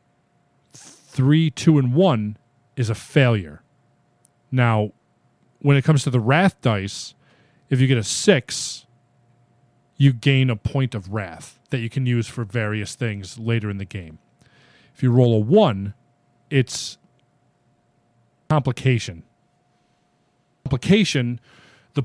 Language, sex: English, male